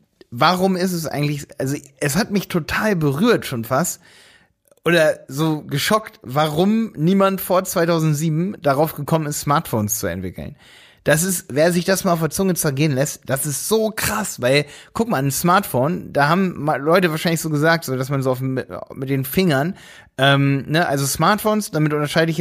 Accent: German